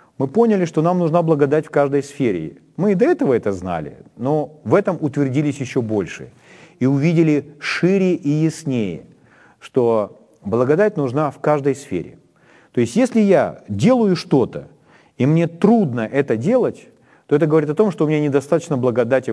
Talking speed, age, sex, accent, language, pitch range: 165 wpm, 40-59, male, native, Ukrainian, 130-175 Hz